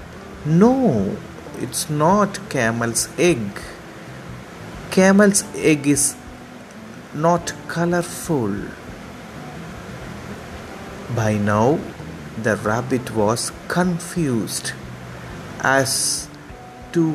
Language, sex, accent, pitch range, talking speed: English, male, Indian, 105-150 Hz, 65 wpm